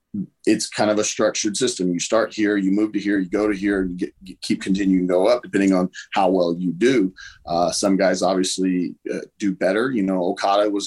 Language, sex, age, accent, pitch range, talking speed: English, male, 30-49, American, 95-105 Hz, 220 wpm